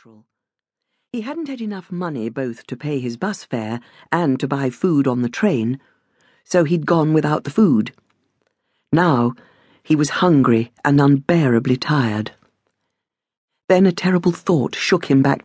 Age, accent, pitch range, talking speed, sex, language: 50-69, British, 125-180 Hz, 150 wpm, female, English